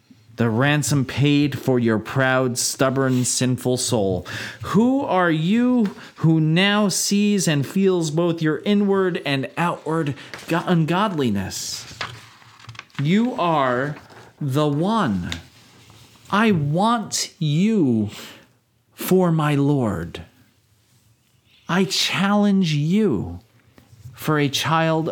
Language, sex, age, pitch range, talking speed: English, male, 40-59, 115-155 Hz, 95 wpm